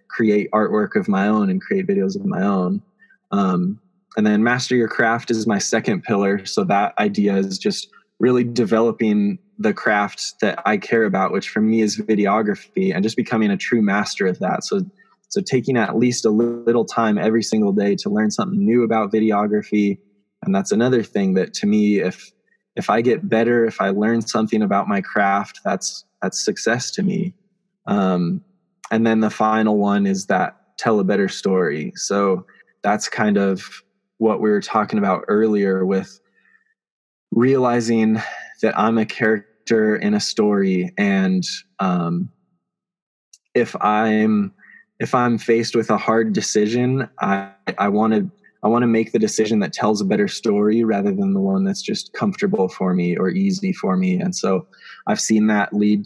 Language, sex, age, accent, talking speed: English, male, 20-39, American, 175 wpm